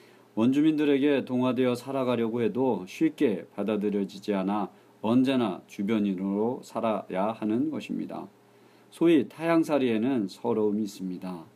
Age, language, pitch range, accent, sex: 40-59, Korean, 105-150 Hz, native, male